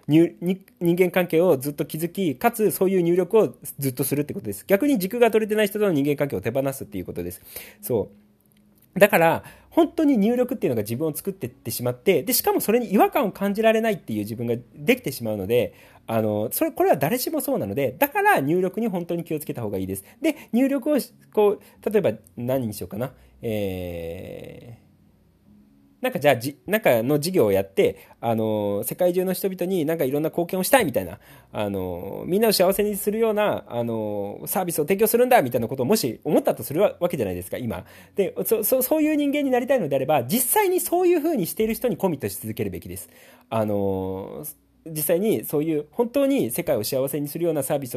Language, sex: Japanese, male